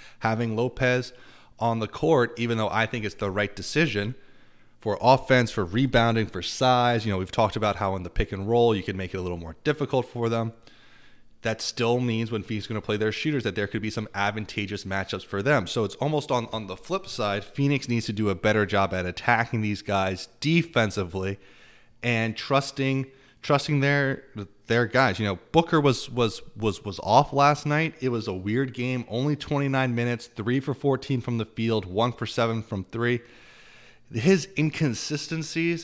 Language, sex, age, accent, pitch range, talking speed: English, male, 30-49, American, 105-130 Hz, 195 wpm